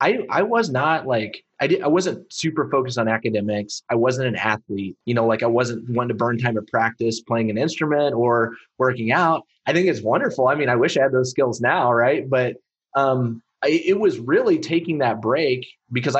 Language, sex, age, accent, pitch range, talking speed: English, male, 30-49, American, 105-125 Hz, 210 wpm